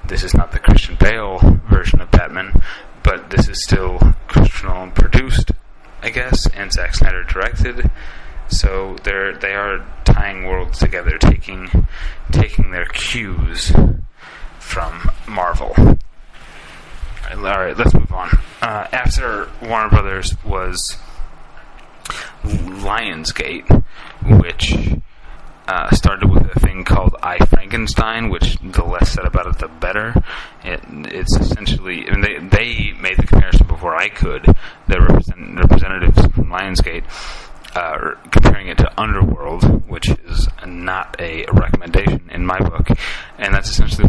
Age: 30-49